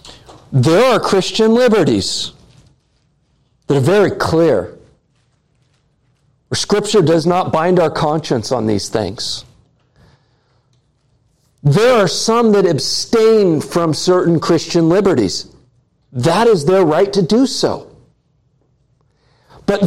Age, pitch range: 50-69, 135-185 Hz